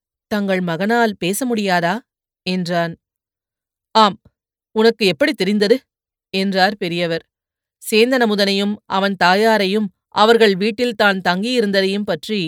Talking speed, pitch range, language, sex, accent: 90 wpm, 175-230 Hz, Tamil, female, native